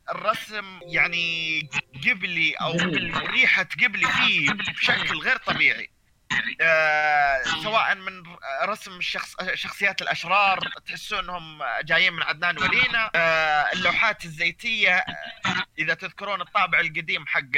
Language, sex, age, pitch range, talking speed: Arabic, male, 30-49, 160-215 Hz, 100 wpm